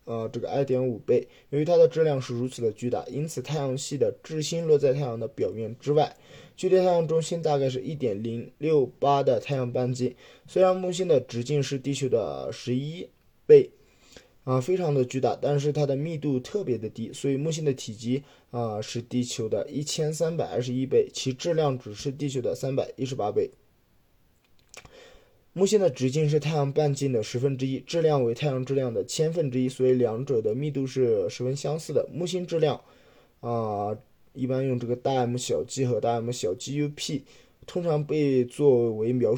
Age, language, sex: 20-39, Chinese, male